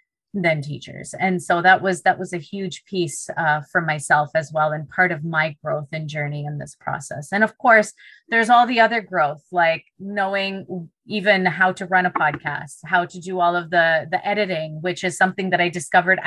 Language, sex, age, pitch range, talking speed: English, female, 30-49, 155-185 Hz, 205 wpm